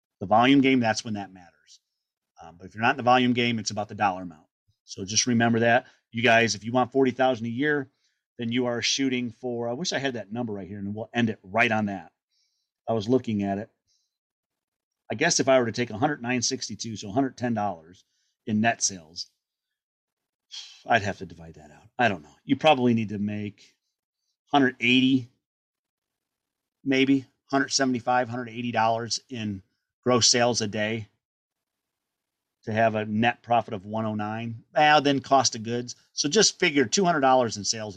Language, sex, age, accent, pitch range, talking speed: English, male, 40-59, American, 105-130 Hz, 180 wpm